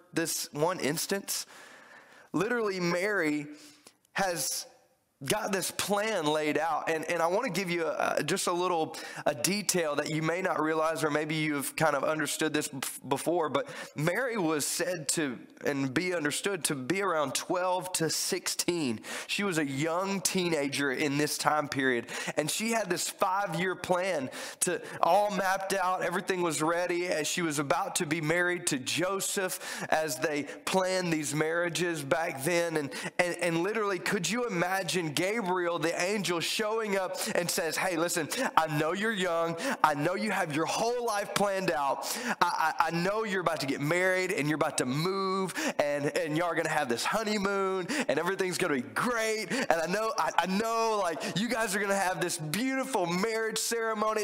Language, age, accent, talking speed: English, 20-39, American, 180 wpm